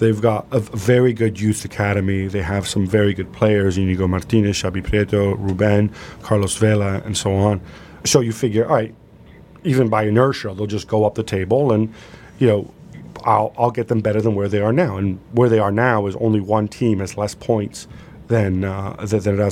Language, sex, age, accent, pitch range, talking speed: English, male, 40-59, American, 105-120 Hz, 205 wpm